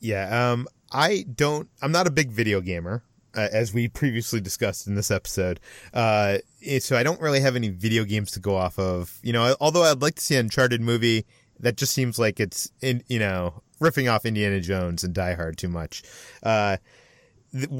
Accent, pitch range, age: American, 100-125 Hz, 30-49